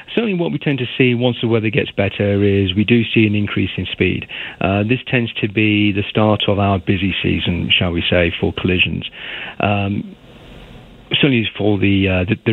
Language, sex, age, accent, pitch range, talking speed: English, male, 40-59, British, 95-115 Hz, 195 wpm